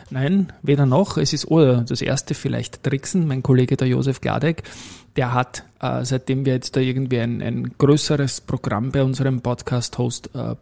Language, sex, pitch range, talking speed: German, male, 125-145 Hz, 175 wpm